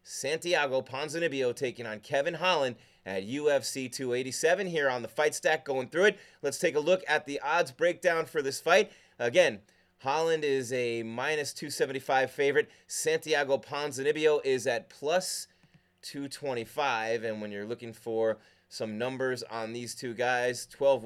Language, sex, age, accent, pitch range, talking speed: English, male, 30-49, American, 125-160 Hz, 150 wpm